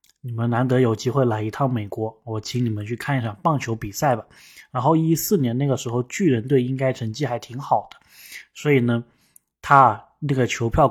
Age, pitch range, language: 20-39, 115-140 Hz, Chinese